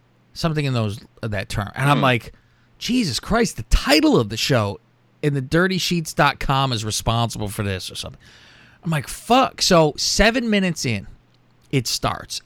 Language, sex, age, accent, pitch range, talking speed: English, male, 30-49, American, 110-150 Hz, 160 wpm